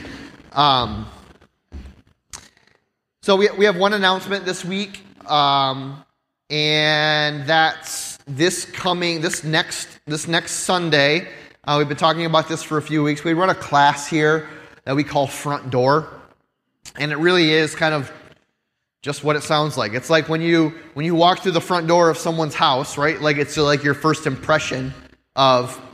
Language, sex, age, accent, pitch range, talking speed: English, male, 20-39, American, 145-165 Hz, 165 wpm